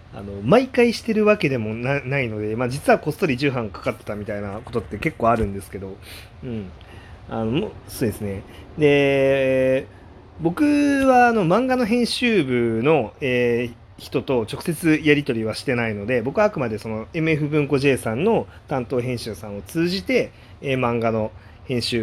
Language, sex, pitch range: Japanese, male, 105-140 Hz